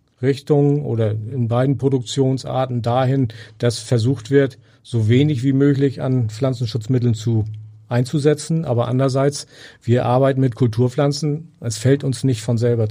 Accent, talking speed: German, 135 wpm